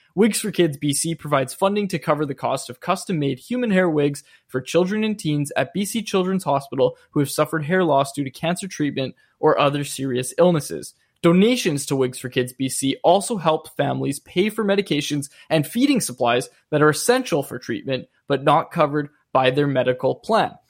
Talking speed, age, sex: 185 wpm, 20-39, male